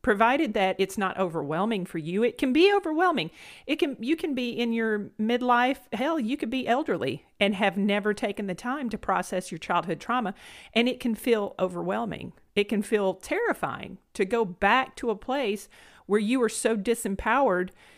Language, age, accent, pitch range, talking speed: English, 40-59, American, 190-245 Hz, 185 wpm